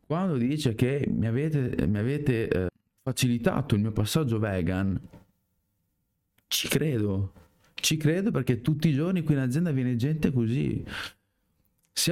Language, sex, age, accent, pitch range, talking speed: Italian, male, 30-49, native, 105-135 Hz, 140 wpm